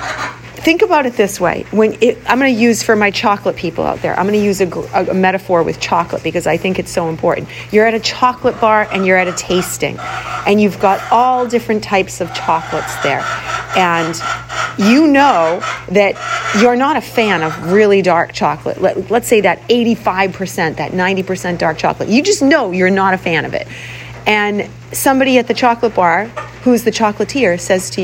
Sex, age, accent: female, 40-59, American